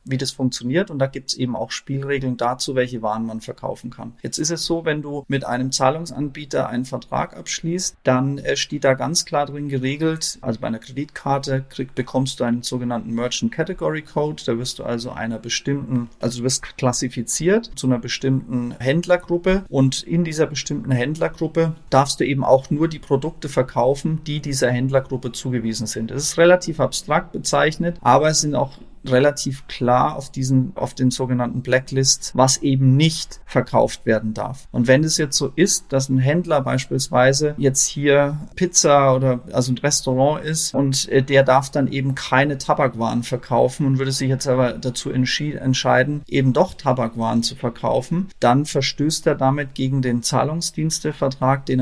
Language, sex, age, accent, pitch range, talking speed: German, male, 40-59, German, 125-150 Hz, 170 wpm